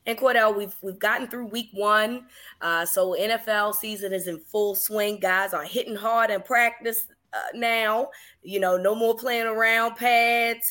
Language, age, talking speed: English, 20-39, 175 wpm